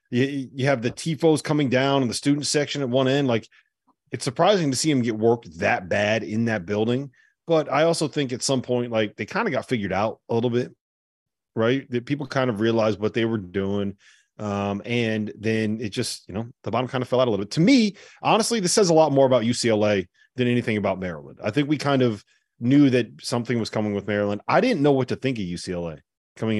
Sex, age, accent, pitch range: male, 30-49, American, 105-130 Hz